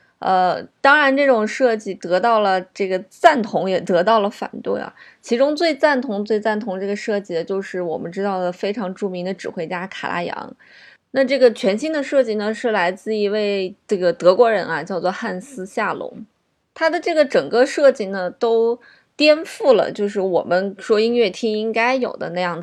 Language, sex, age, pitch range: Chinese, female, 20-39, 190-245 Hz